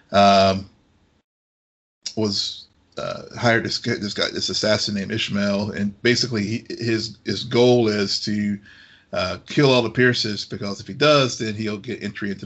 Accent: American